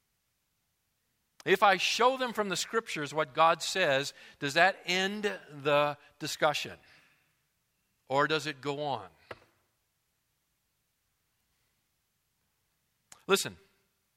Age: 50-69